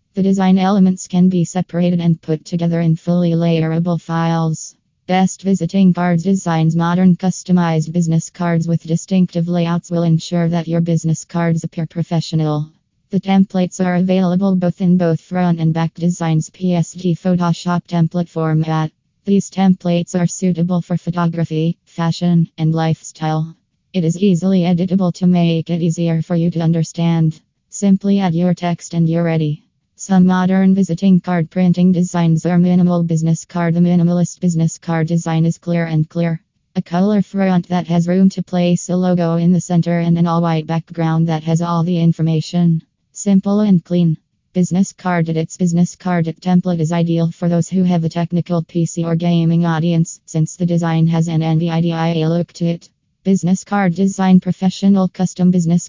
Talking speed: 165 wpm